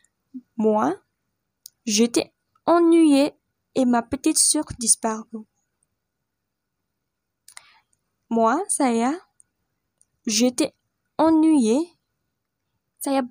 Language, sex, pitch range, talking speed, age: Indonesian, female, 240-315 Hz, 50 wpm, 10-29